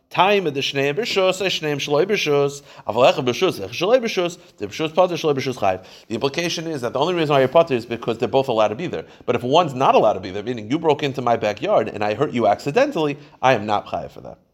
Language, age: English, 30-49